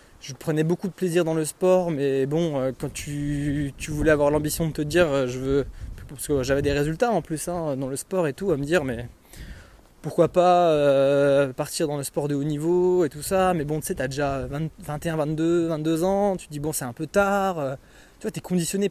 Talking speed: 240 wpm